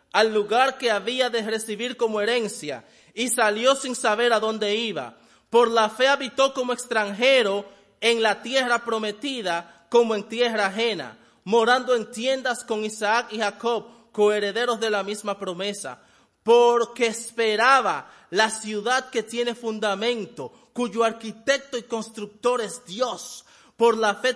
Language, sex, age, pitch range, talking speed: English, male, 30-49, 210-240 Hz, 140 wpm